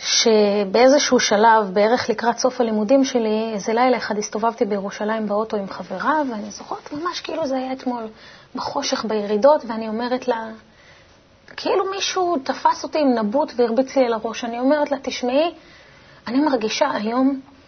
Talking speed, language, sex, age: 145 wpm, Hebrew, female, 30-49